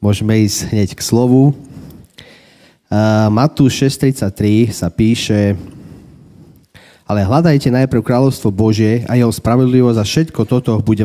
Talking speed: 120 wpm